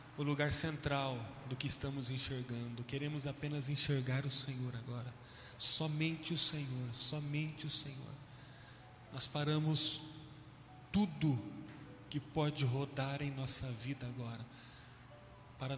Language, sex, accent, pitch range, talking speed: Portuguese, male, Brazilian, 130-155 Hz, 115 wpm